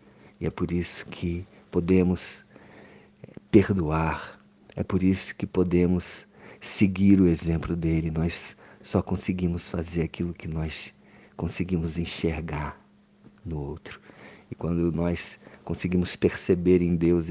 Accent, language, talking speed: Brazilian, Portuguese, 120 wpm